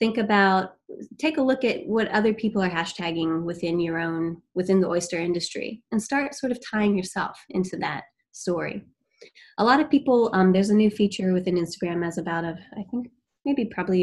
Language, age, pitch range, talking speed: English, 20-39, 175-220 Hz, 195 wpm